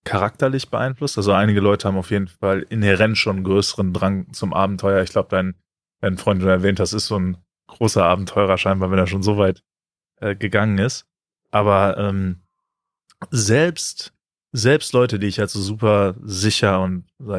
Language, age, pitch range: German, 20-39, 95-110 Hz